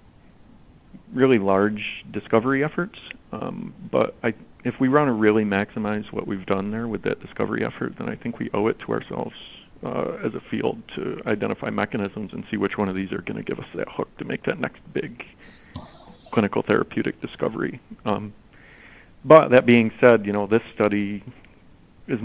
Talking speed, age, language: 180 wpm, 40-59, English